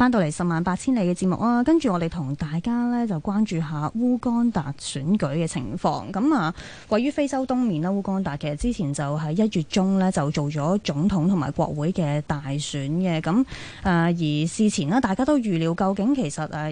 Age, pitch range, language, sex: 20-39, 150-210 Hz, Chinese, female